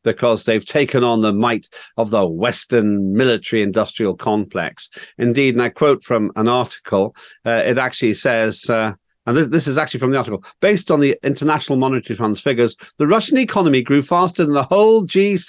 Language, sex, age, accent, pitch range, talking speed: English, male, 40-59, British, 110-155 Hz, 185 wpm